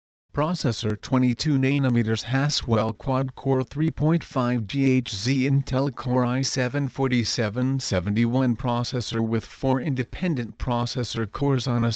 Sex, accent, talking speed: male, American, 80 wpm